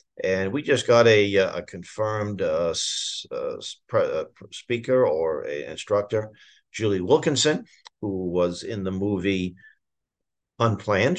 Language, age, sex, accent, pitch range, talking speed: English, 50-69, male, American, 95-145 Hz, 125 wpm